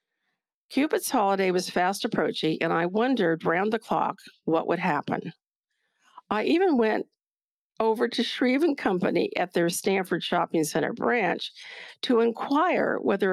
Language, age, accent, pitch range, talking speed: English, 50-69, American, 190-255 Hz, 135 wpm